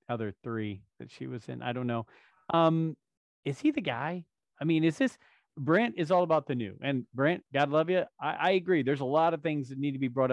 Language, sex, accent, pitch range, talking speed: English, male, American, 125-160 Hz, 245 wpm